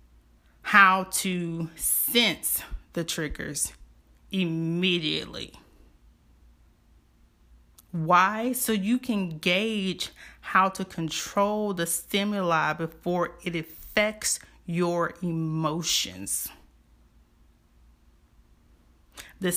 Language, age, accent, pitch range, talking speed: English, 30-49, American, 160-190 Hz, 65 wpm